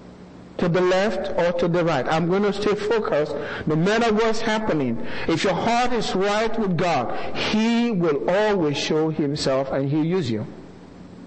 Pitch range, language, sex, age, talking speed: 150-210 Hz, English, male, 50-69, 170 wpm